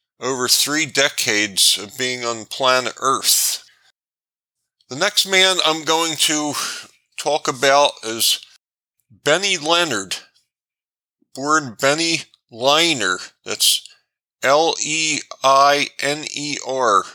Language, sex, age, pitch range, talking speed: English, male, 50-69, 130-155 Hz, 85 wpm